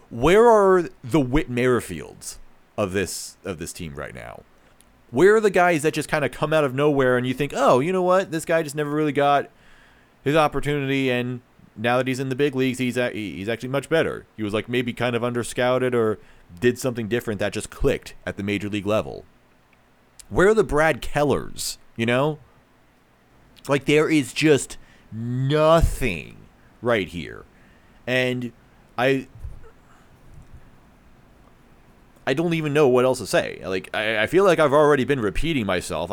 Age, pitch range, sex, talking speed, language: 40-59, 100-145 Hz, male, 180 wpm, English